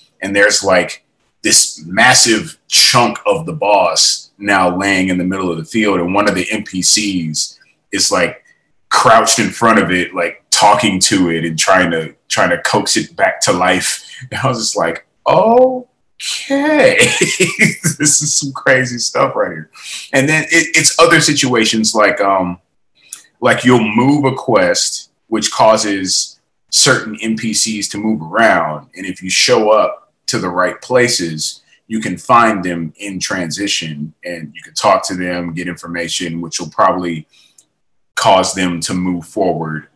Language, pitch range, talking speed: English, 85-120 Hz, 160 wpm